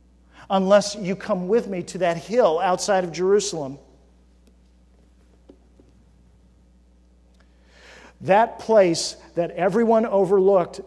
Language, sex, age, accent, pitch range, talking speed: English, male, 50-69, American, 140-210 Hz, 90 wpm